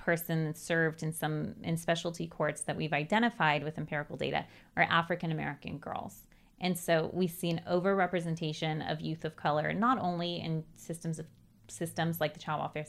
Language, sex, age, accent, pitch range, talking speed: English, female, 30-49, American, 155-180 Hz, 175 wpm